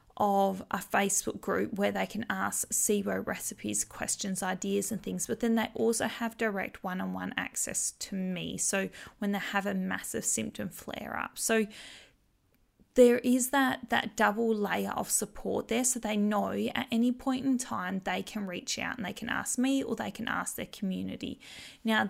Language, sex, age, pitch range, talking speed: English, female, 20-39, 195-240 Hz, 180 wpm